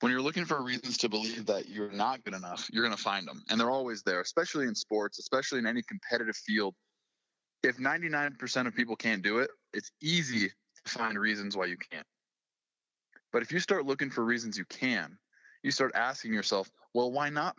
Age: 20-39